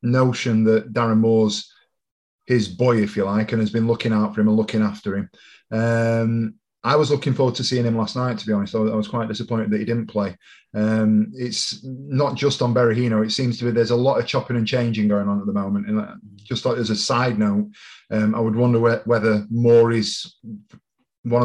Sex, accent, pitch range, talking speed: male, British, 110-125 Hz, 220 wpm